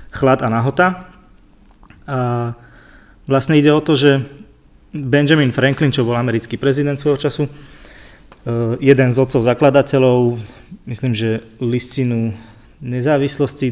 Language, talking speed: Slovak, 110 wpm